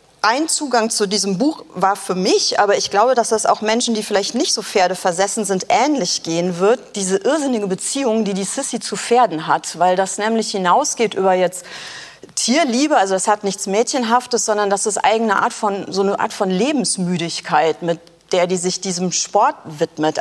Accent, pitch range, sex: German, 185-225 Hz, female